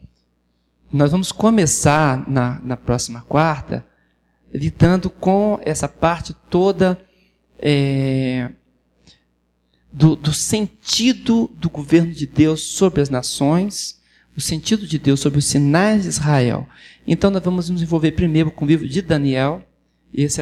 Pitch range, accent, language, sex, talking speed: 130-165 Hz, Brazilian, Portuguese, male, 125 wpm